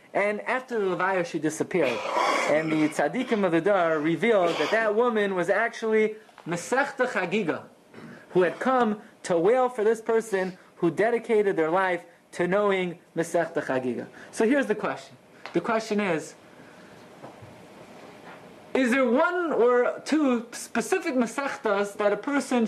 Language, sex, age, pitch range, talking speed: English, male, 30-49, 165-230 Hz, 140 wpm